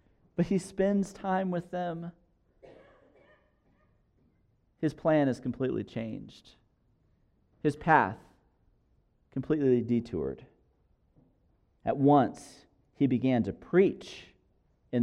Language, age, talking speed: English, 40-59, 90 wpm